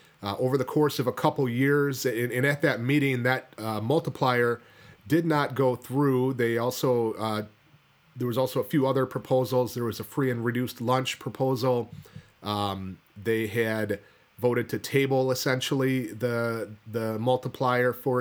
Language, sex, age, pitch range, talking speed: English, male, 30-49, 110-135 Hz, 160 wpm